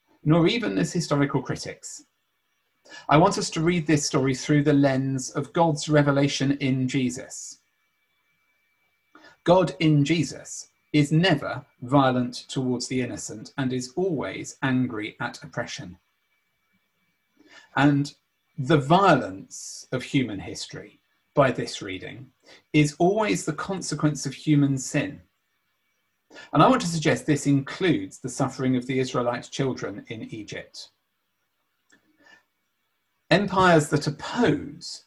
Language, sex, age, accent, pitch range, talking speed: English, male, 40-59, British, 135-160 Hz, 120 wpm